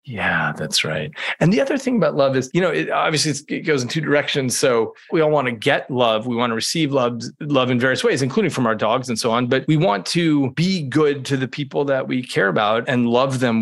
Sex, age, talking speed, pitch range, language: male, 30-49, 250 wpm, 120-150 Hz, English